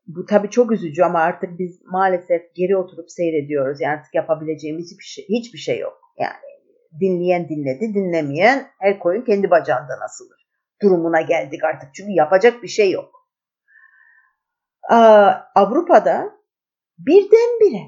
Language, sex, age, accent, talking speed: Turkish, female, 50-69, native, 130 wpm